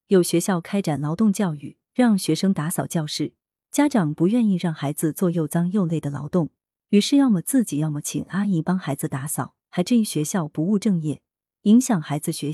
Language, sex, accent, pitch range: Chinese, female, native, 155-220 Hz